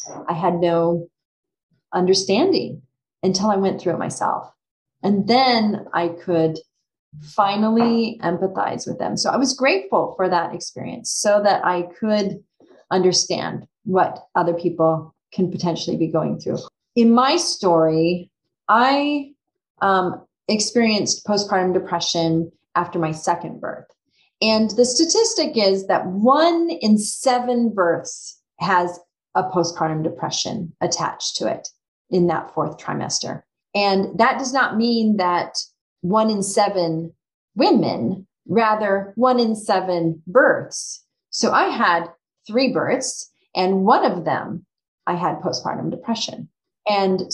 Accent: American